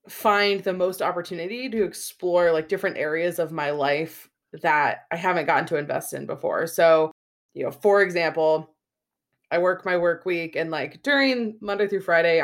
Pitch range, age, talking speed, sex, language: 155-195 Hz, 20-39, 175 wpm, female, English